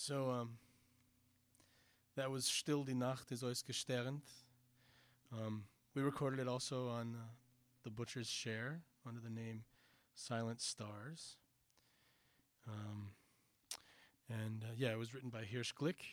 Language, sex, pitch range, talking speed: English, male, 110-130 Hz, 125 wpm